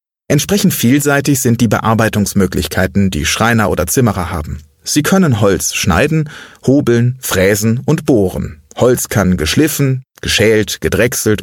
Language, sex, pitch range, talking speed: German, male, 95-140 Hz, 120 wpm